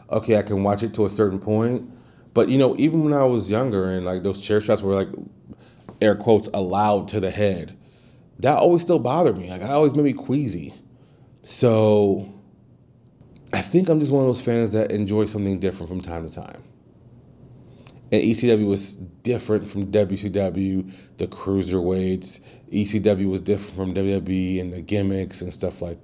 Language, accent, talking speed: English, American, 175 wpm